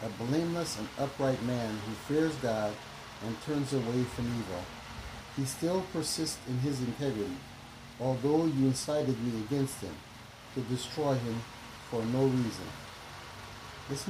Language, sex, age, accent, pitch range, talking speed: English, male, 60-79, American, 105-140 Hz, 135 wpm